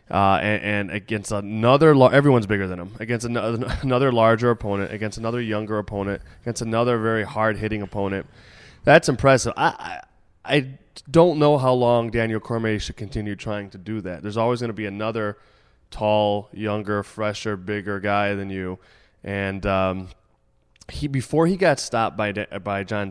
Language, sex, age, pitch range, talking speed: English, male, 20-39, 95-115 Hz, 170 wpm